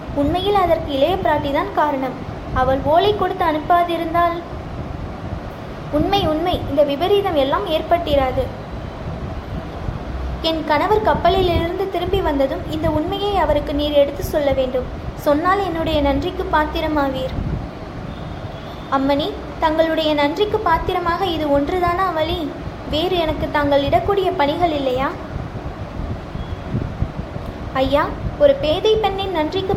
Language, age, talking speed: Tamil, 20-39, 90 wpm